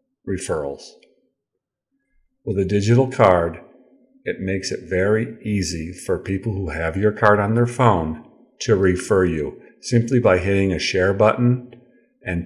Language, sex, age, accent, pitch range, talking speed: English, male, 50-69, American, 90-115 Hz, 140 wpm